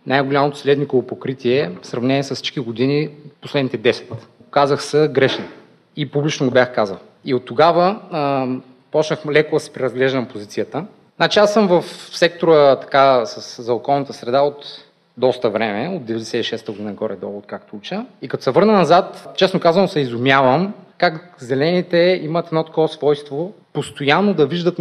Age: 30-49